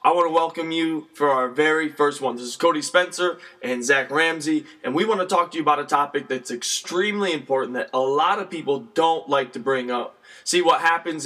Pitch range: 140-175 Hz